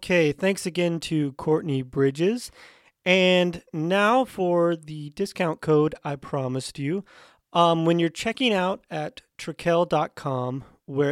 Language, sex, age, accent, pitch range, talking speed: English, male, 30-49, American, 140-180 Hz, 125 wpm